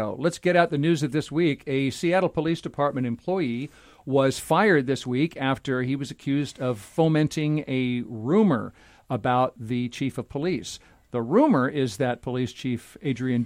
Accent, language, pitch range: American, English, 125-160 Hz